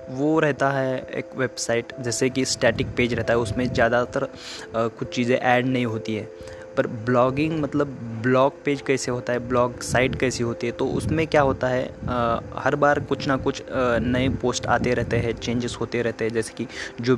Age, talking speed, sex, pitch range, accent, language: 20-39, 190 wpm, male, 115-130 Hz, native, Hindi